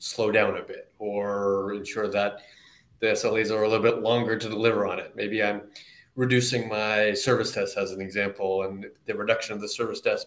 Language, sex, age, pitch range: English, male, 30-49, 105-125 Hz